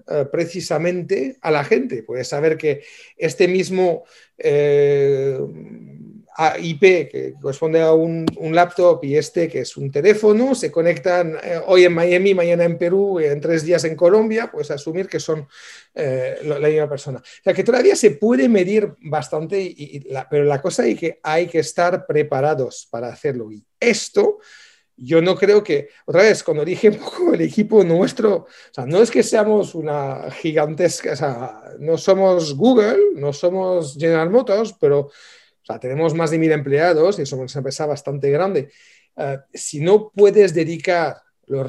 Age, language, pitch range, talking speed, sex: 40-59, Spanish, 150-200 Hz, 170 wpm, male